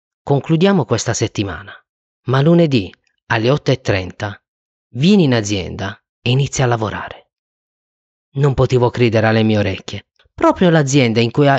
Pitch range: 105-145 Hz